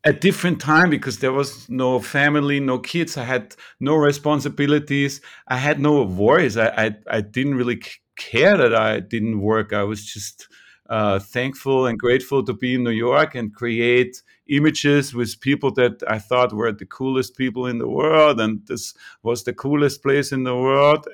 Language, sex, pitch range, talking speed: English, male, 120-140 Hz, 180 wpm